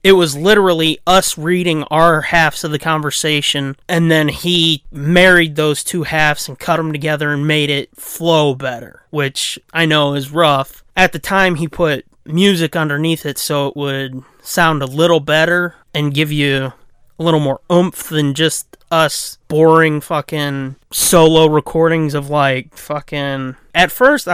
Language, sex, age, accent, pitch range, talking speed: English, male, 30-49, American, 145-180 Hz, 160 wpm